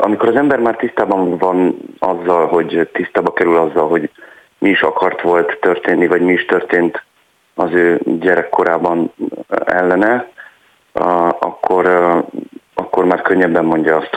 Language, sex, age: Hungarian, male, 40-59